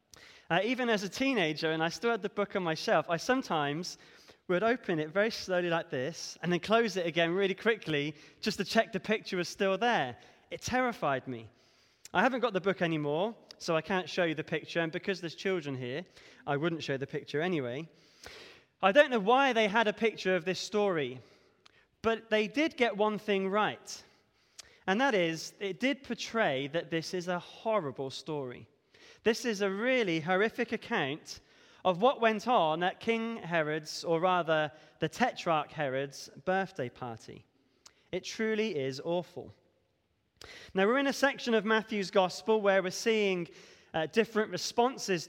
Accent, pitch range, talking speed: British, 165-225 Hz, 175 wpm